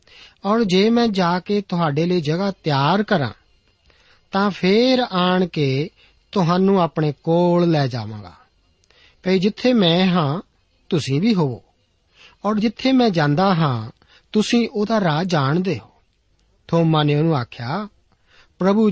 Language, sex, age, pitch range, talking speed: Punjabi, male, 50-69, 145-195 Hz, 130 wpm